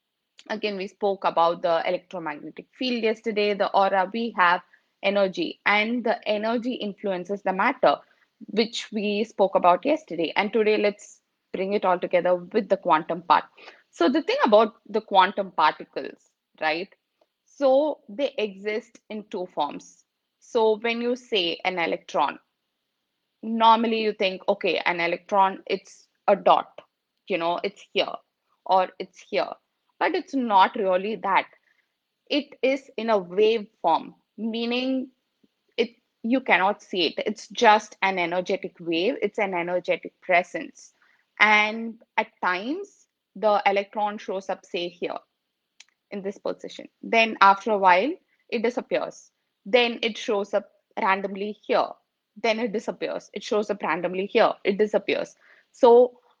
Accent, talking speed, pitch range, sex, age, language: Indian, 140 wpm, 190-235 Hz, female, 20-39, English